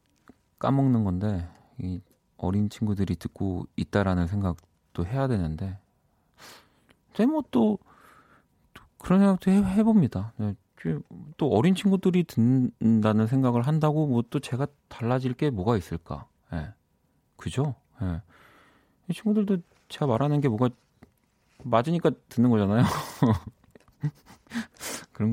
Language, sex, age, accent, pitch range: Korean, male, 40-59, native, 100-145 Hz